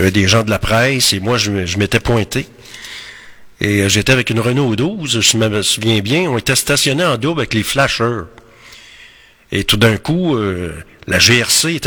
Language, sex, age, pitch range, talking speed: French, male, 50-69, 105-140 Hz, 190 wpm